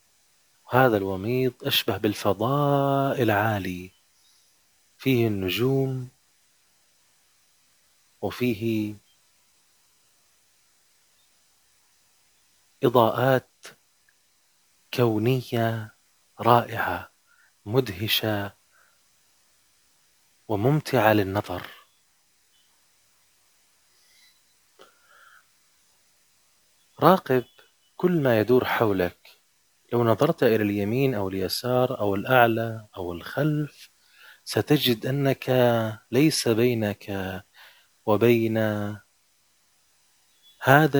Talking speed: 50 wpm